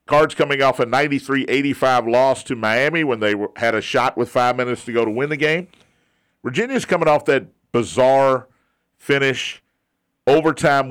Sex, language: male, English